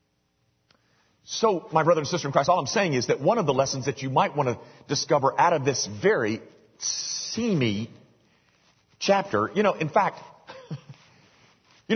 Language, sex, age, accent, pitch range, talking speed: English, male, 40-59, American, 135-180 Hz, 165 wpm